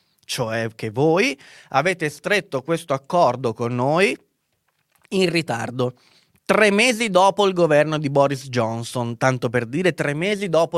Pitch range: 125-170 Hz